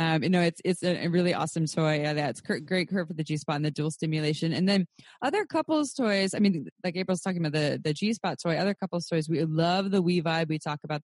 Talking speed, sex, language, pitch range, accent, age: 260 wpm, female, English, 150-185 Hz, American, 20-39